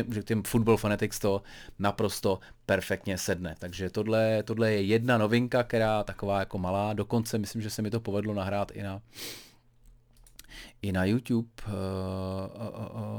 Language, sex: Czech, male